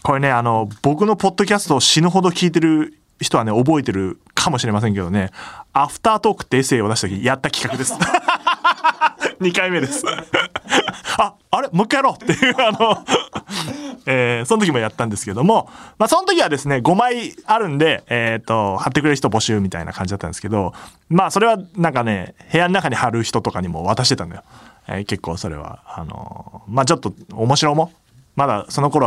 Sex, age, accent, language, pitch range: male, 20-39, native, Japanese, 105-170 Hz